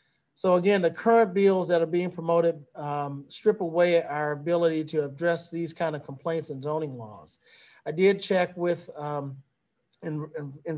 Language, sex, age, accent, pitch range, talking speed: English, male, 40-59, American, 150-175 Hz, 160 wpm